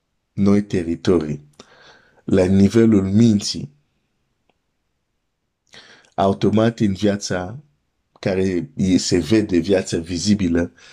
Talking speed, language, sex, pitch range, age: 75 wpm, Romanian, male, 85-105 Hz, 50-69